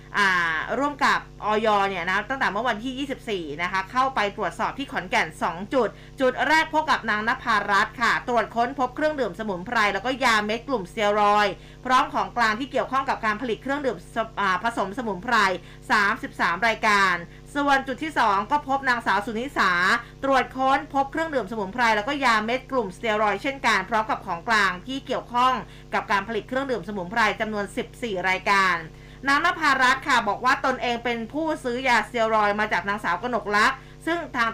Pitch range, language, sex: 205-255 Hz, Thai, female